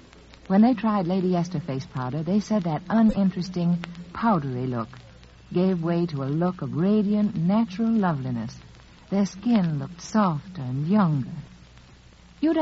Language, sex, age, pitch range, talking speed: English, female, 60-79, 150-215 Hz, 140 wpm